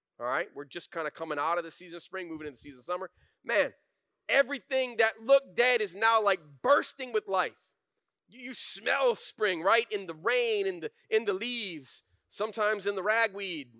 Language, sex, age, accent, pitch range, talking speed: English, male, 30-49, American, 205-275 Hz, 205 wpm